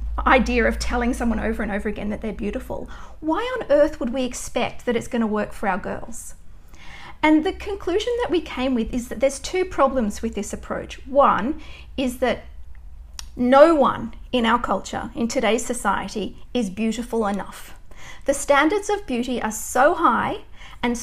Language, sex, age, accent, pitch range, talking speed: English, female, 40-59, Australian, 225-290 Hz, 175 wpm